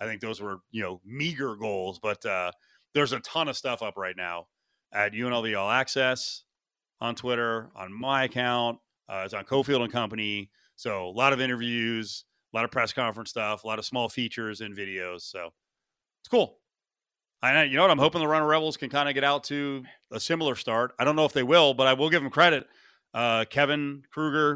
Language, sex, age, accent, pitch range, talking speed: English, male, 30-49, American, 110-145 Hz, 215 wpm